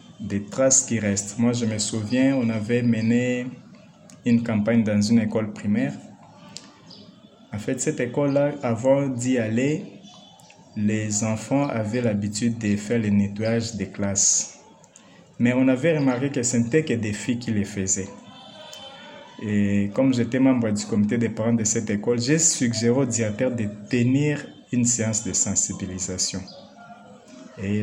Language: French